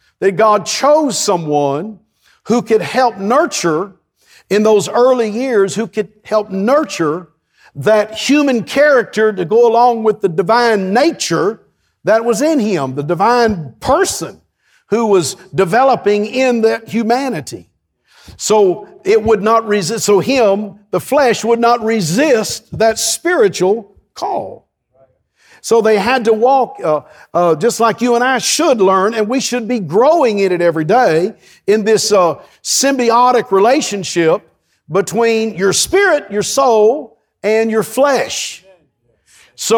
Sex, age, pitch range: male, 50-69, 195-245 Hz